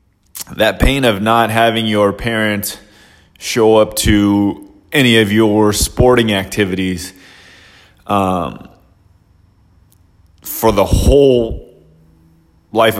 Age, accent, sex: 20-39, American, male